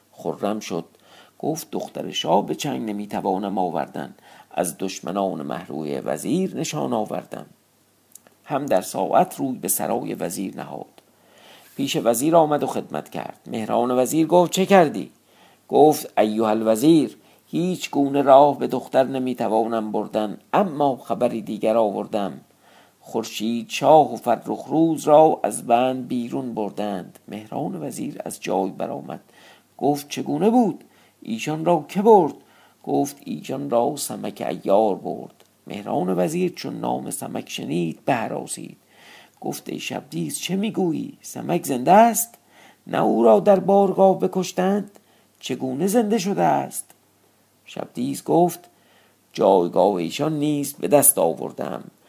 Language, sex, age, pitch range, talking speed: Persian, male, 50-69, 110-175 Hz, 125 wpm